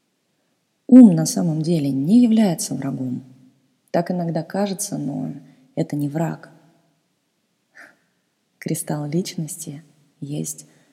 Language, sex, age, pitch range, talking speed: Russian, female, 20-39, 145-180 Hz, 95 wpm